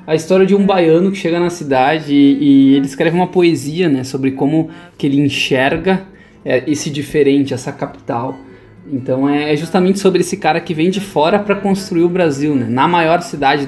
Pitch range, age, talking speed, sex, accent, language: 135-170 Hz, 20-39, 200 wpm, male, Brazilian, Portuguese